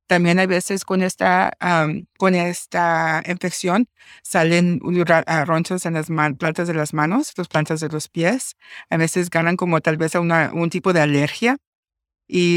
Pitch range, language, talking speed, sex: 160-185 Hz, English, 165 wpm, female